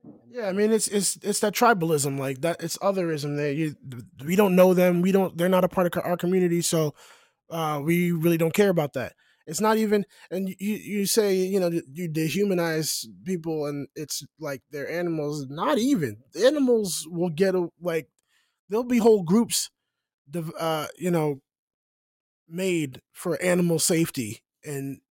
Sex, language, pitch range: male, English, 145-180 Hz